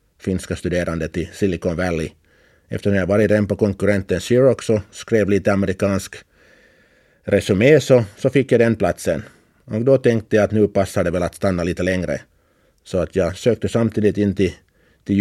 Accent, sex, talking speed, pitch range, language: Finnish, male, 170 wpm, 90-105 Hz, Swedish